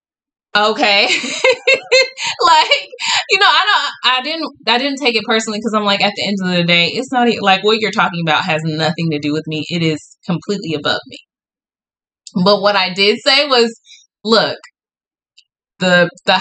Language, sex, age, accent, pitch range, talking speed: English, female, 20-39, American, 175-245 Hz, 180 wpm